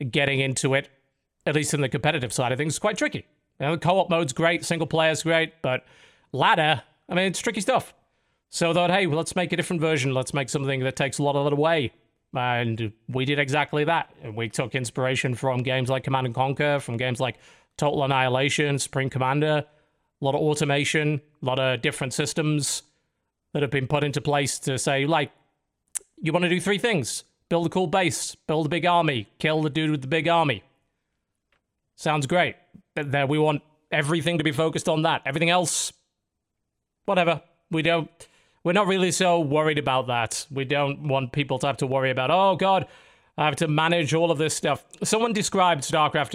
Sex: male